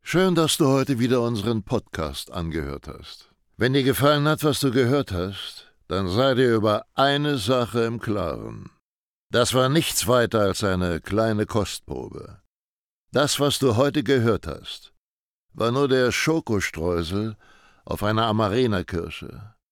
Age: 60-79